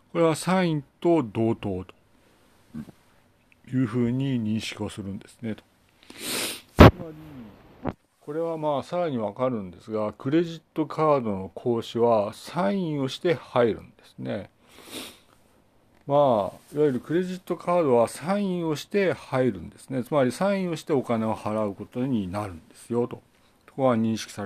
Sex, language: male, Japanese